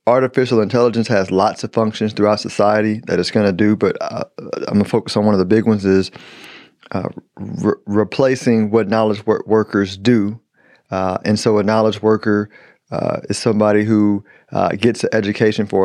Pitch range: 100-110 Hz